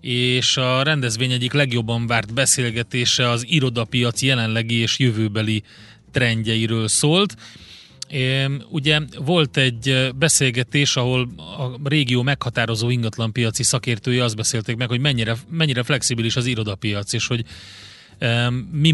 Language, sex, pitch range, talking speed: Hungarian, male, 115-135 Hz, 115 wpm